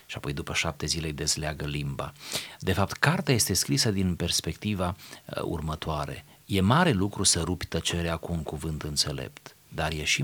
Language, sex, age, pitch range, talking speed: Romanian, male, 40-59, 80-125 Hz, 170 wpm